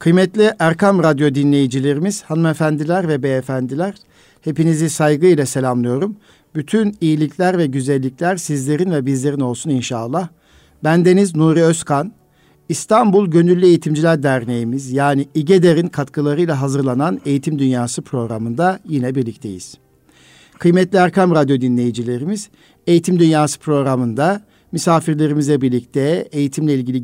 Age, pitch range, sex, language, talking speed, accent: 60-79, 130-170 Hz, male, Turkish, 100 wpm, native